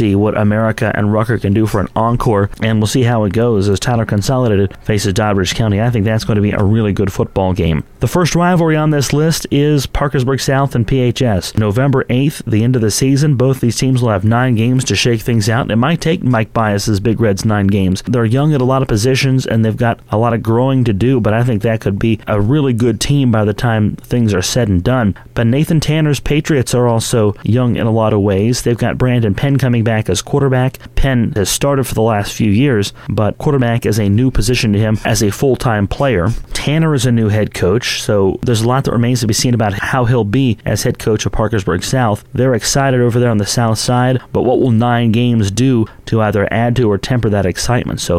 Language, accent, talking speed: English, American, 240 wpm